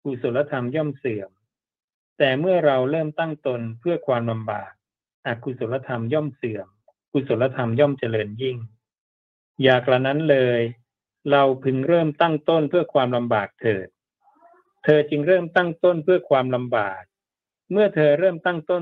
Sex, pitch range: male, 115-150 Hz